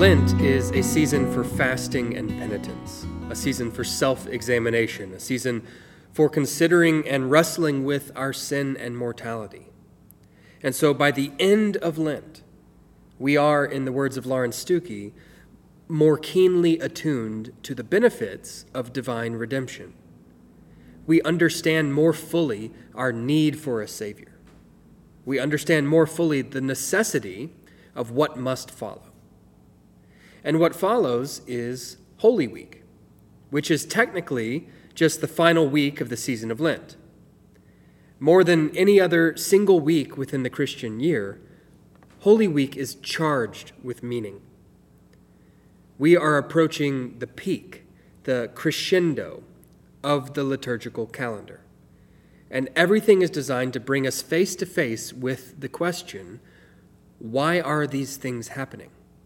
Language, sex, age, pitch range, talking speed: English, male, 20-39, 120-160 Hz, 130 wpm